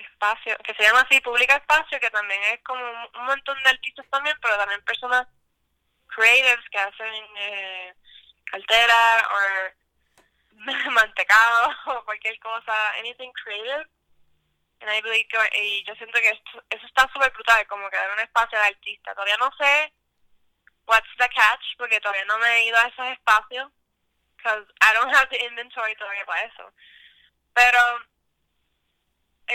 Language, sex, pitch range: Spanish, female, 215-260 Hz